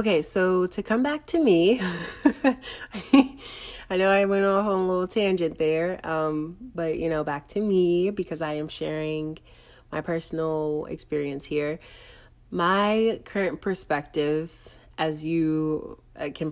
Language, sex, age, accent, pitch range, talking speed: English, female, 20-39, American, 150-175 Hz, 140 wpm